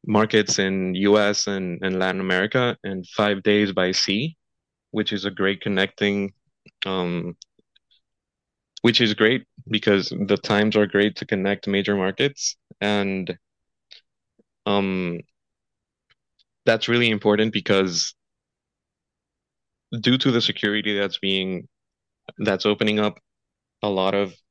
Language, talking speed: English, 120 wpm